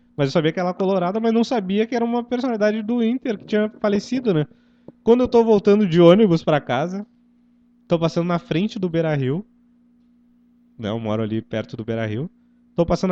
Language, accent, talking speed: Portuguese, Brazilian, 190 wpm